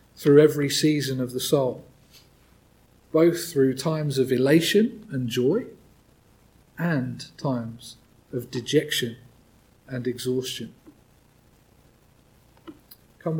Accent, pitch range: British, 135-190 Hz